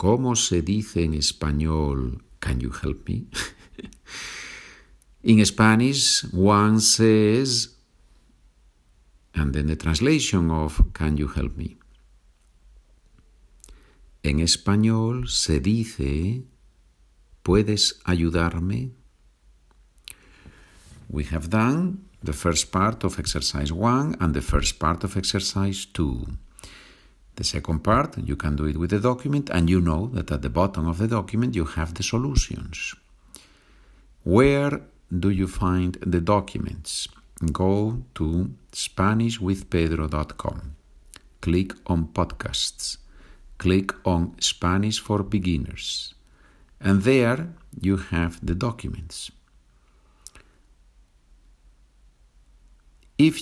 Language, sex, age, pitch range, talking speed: Spanish, male, 50-69, 75-105 Hz, 105 wpm